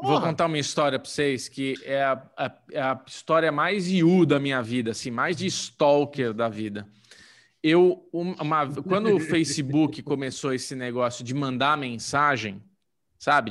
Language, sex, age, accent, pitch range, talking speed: Portuguese, male, 20-39, Brazilian, 135-200 Hz, 160 wpm